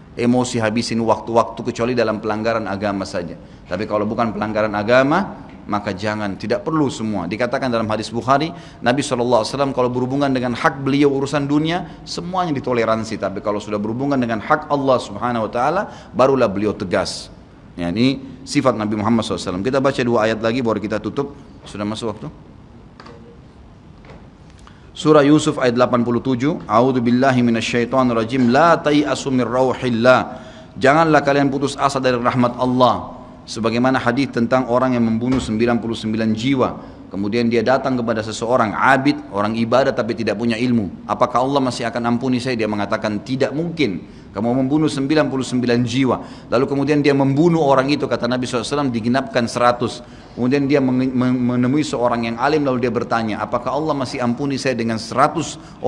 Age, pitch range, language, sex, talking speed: 30-49, 115-135 Hz, Indonesian, male, 150 wpm